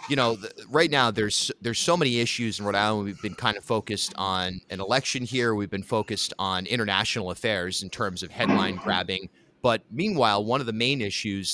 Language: English